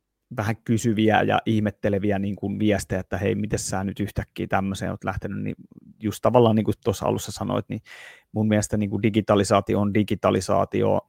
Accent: native